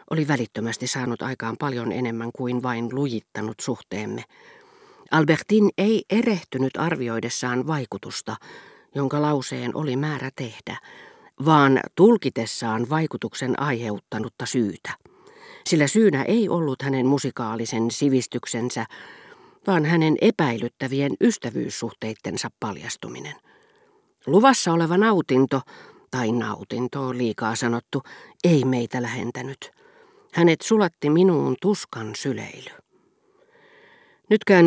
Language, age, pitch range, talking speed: Finnish, 40-59, 125-180 Hz, 95 wpm